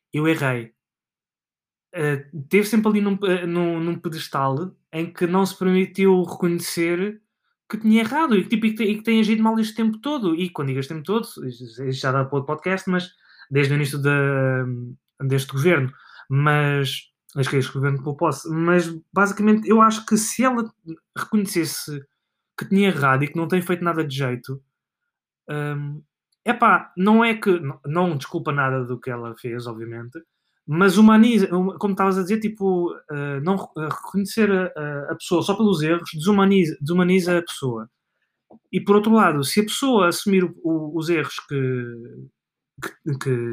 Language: Portuguese